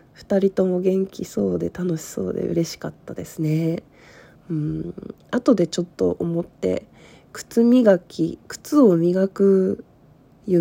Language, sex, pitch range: Japanese, female, 165-225 Hz